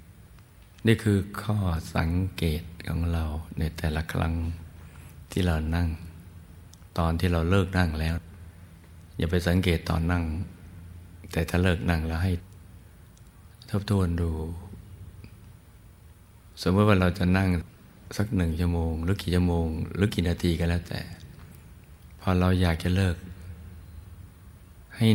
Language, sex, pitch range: Thai, male, 85-95 Hz